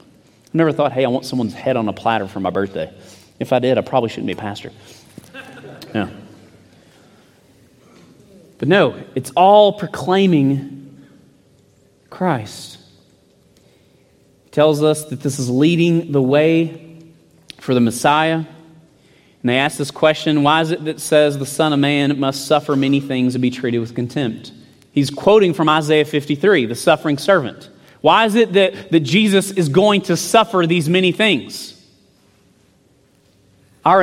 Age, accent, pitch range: 30-49, American, 120-170 Hz